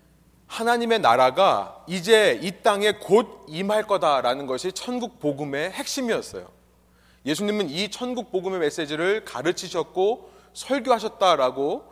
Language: Korean